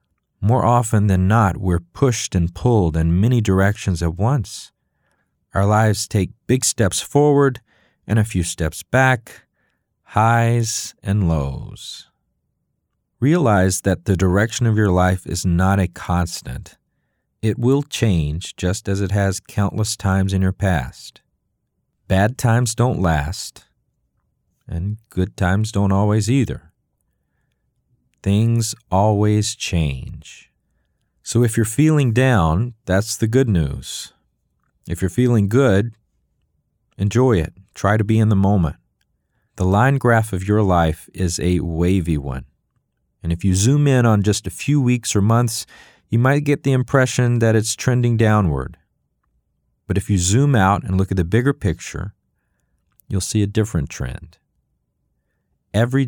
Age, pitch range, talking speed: 40-59, 90-115 Hz, 140 wpm